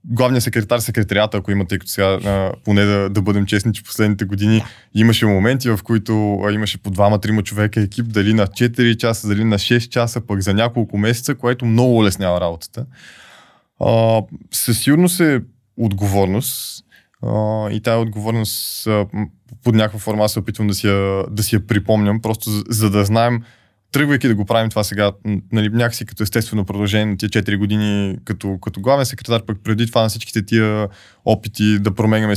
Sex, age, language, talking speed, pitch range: male, 20-39, Bulgarian, 175 wpm, 100-115 Hz